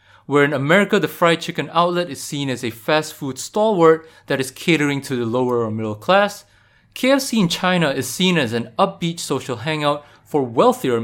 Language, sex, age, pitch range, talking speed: English, male, 20-39, 115-175 Hz, 190 wpm